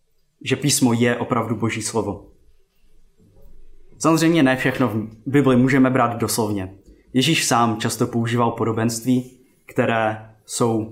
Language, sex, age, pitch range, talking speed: Czech, male, 20-39, 110-145 Hz, 115 wpm